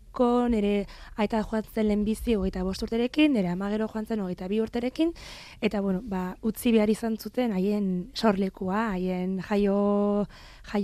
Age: 20-39